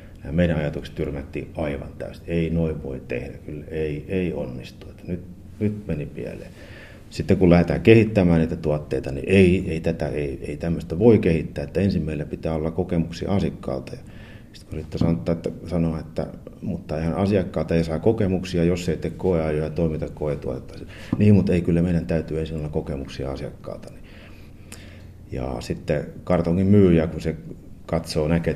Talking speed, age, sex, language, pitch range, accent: 160 wpm, 30-49, male, Finnish, 80-95 Hz, native